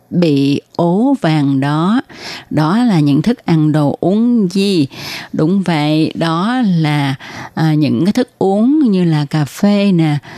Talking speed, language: 150 wpm, Vietnamese